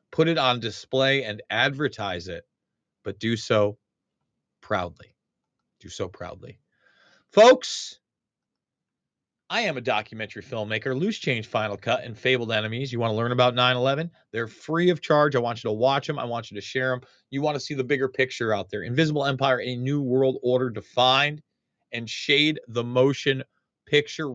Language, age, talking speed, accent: English, 30-49, 175 wpm, American